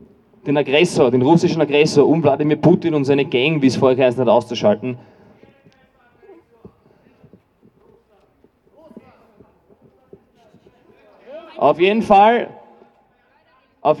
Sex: male